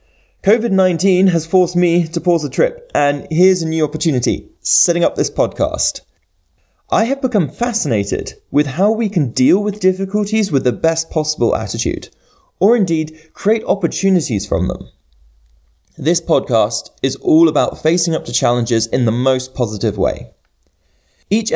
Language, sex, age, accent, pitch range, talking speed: English, male, 20-39, British, 130-185 Hz, 150 wpm